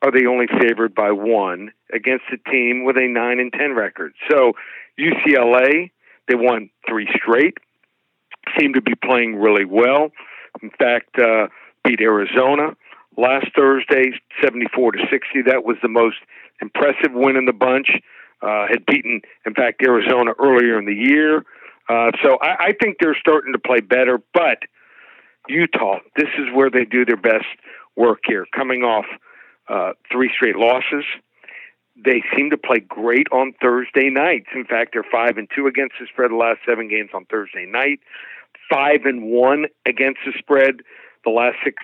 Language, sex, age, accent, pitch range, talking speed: English, male, 50-69, American, 115-135 Hz, 165 wpm